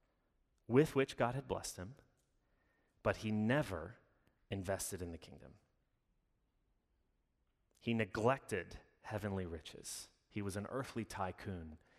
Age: 30-49